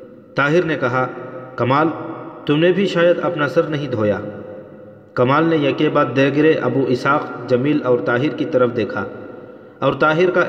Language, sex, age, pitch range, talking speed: Urdu, male, 40-59, 125-155 Hz, 160 wpm